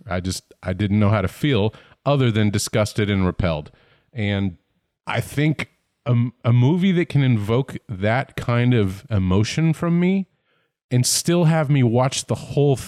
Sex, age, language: male, 30-49, English